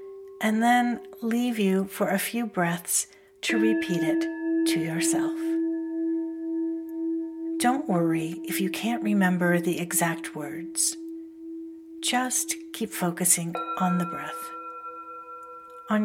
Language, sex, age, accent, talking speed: English, female, 60-79, American, 110 wpm